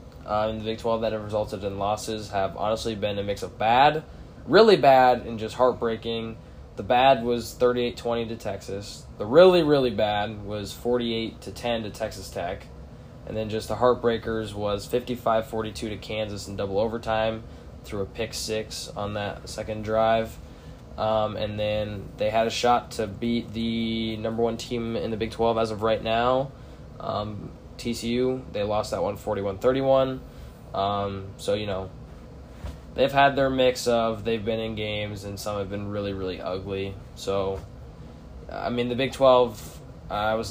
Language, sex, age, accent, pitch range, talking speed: English, male, 10-29, American, 100-115 Hz, 170 wpm